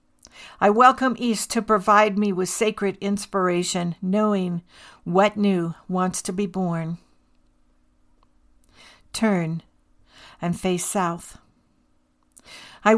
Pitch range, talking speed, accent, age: 175-215 Hz, 95 wpm, American, 60-79